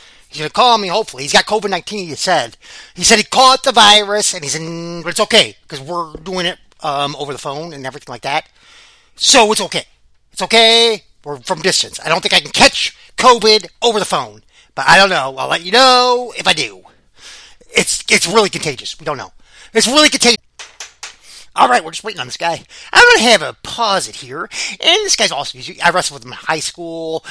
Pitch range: 170-245 Hz